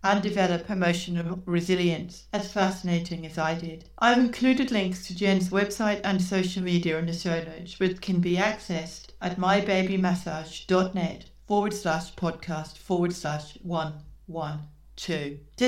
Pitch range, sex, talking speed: 170-205 Hz, female, 130 wpm